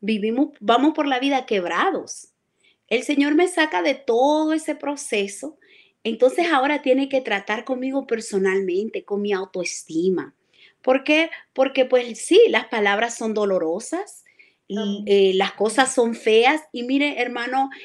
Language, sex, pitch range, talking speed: Spanish, female, 210-275 Hz, 140 wpm